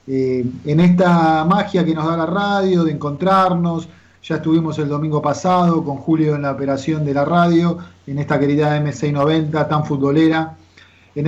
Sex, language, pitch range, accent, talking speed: male, Spanish, 140-175 Hz, Argentinian, 165 wpm